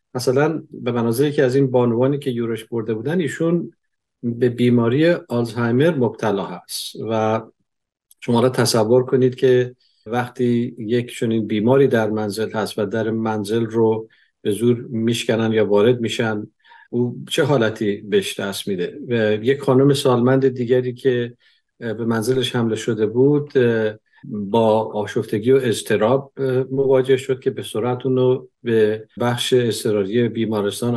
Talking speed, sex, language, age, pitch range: 140 wpm, male, Persian, 50-69, 115-130 Hz